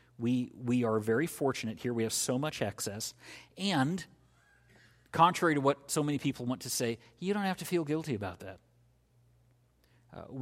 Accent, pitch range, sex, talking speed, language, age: American, 115-140 Hz, male, 175 wpm, English, 40-59